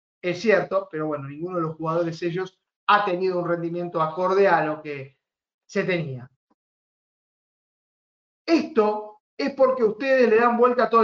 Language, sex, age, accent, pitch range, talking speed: Spanish, male, 30-49, Argentinian, 190-240 Hz, 145 wpm